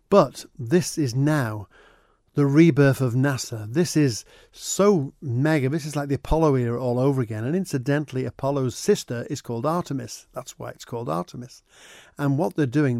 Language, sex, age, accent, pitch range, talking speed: English, male, 50-69, British, 120-150 Hz, 170 wpm